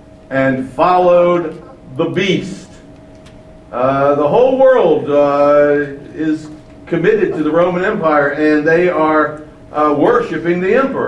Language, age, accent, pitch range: English, 60-79, American, 135-180 Hz